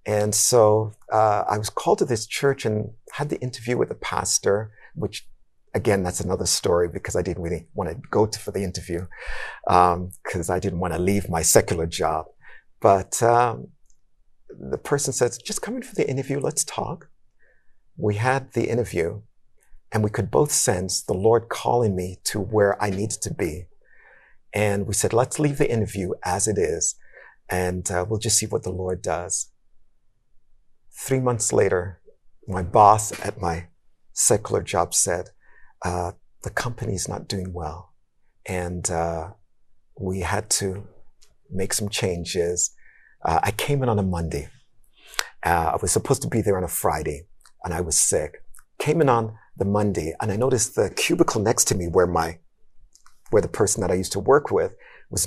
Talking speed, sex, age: 175 wpm, male, 50-69